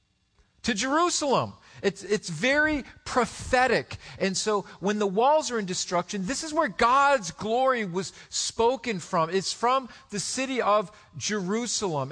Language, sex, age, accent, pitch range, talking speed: English, male, 50-69, American, 160-210 Hz, 140 wpm